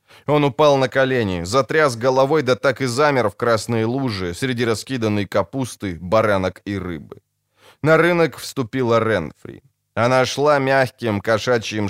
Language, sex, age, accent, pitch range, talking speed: Ukrainian, male, 20-39, native, 105-140 Hz, 135 wpm